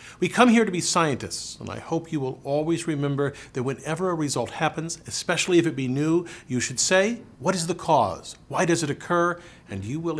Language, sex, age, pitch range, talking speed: Spanish, male, 50-69, 115-165 Hz, 220 wpm